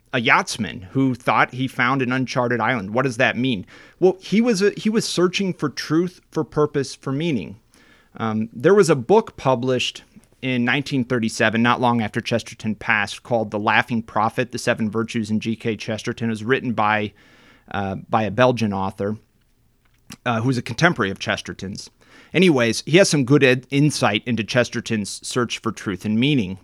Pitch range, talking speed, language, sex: 110-135 Hz, 170 wpm, English, male